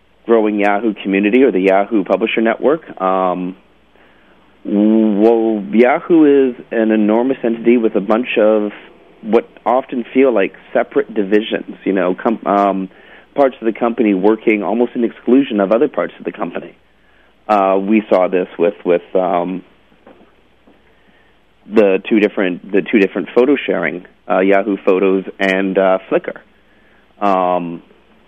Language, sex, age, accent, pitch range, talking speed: English, male, 40-59, American, 95-120 Hz, 140 wpm